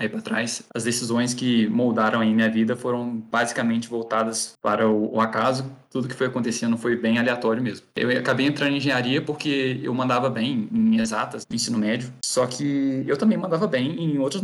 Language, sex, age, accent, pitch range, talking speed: Portuguese, male, 20-39, Brazilian, 115-140 Hz, 195 wpm